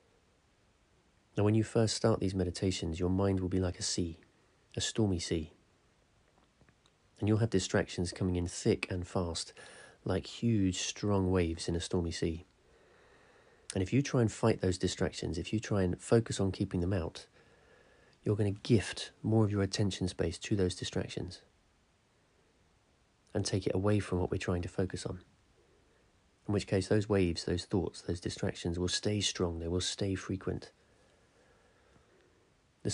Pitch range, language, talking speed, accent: 90-105 Hz, English, 165 wpm, British